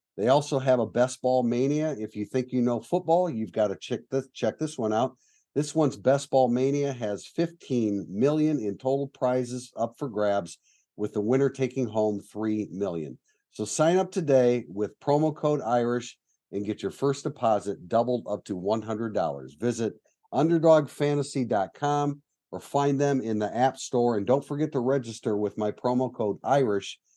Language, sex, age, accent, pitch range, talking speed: English, male, 50-69, American, 110-140 Hz, 175 wpm